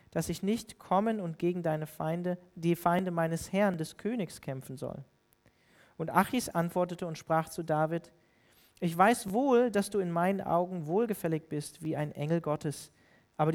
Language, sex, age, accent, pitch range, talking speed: German, male, 40-59, German, 150-180 Hz, 170 wpm